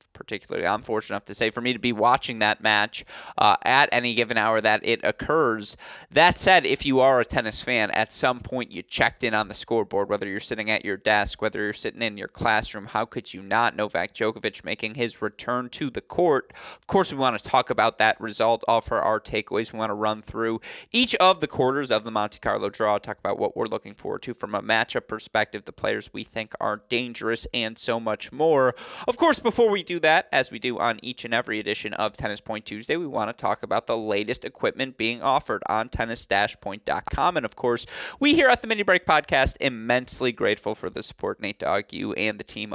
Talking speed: 225 wpm